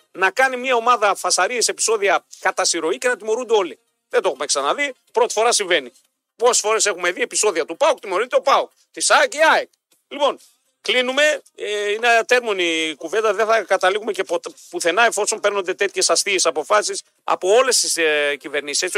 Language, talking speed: Greek, 170 wpm